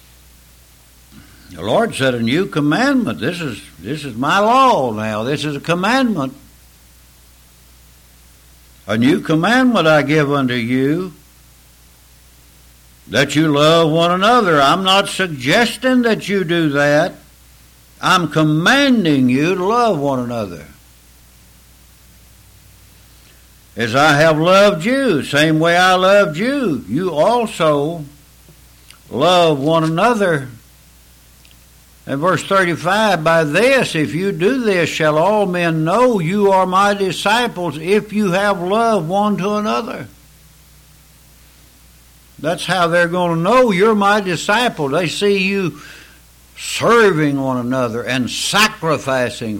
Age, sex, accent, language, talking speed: 60-79, male, American, English, 120 wpm